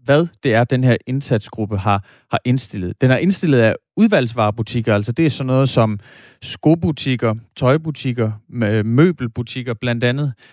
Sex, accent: male, native